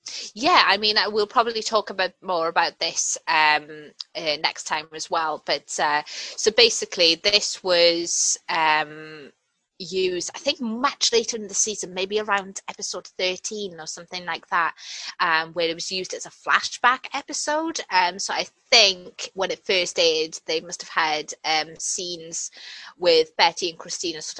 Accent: British